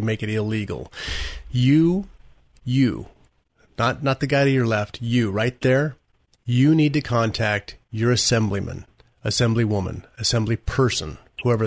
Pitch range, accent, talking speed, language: 110-130 Hz, American, 130 wpm, English